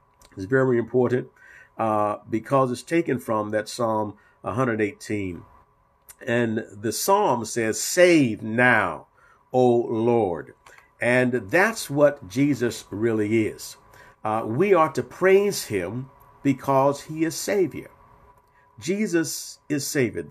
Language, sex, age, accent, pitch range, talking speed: English, male, 50-69, American, 115-140 Hz, 110 wpm